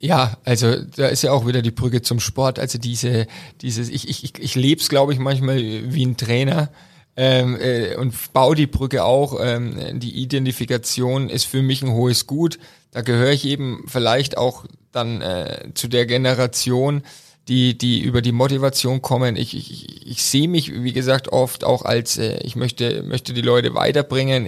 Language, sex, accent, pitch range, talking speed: German, male, German, 125-145 Hz, 185 wpm